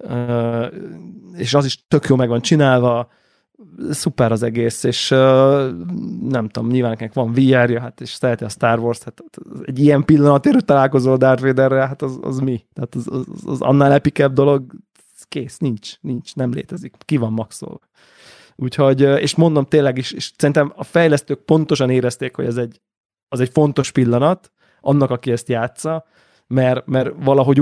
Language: Hungarian